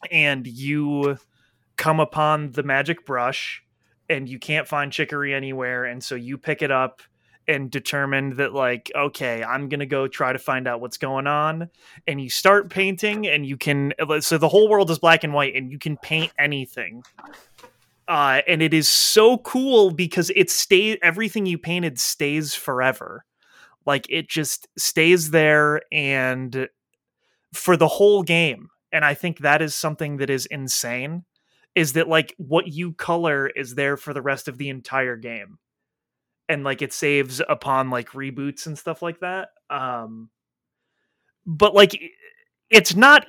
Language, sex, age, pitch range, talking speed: English, male, 30-49, 135-175 Hz, 165 wpm